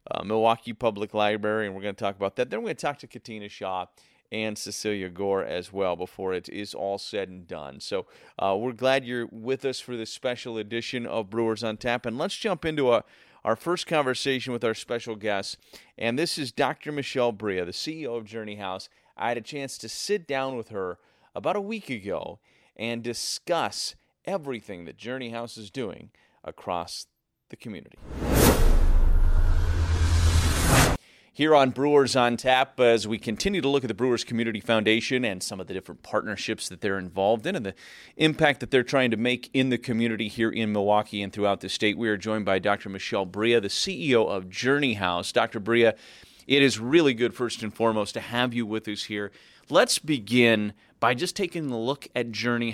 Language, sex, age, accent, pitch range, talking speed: English, male, 30-49, American, 105-125 Hz, 195 wpm